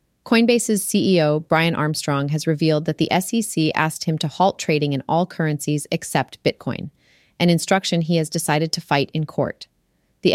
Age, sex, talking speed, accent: 30-49, female, 170 wpm, American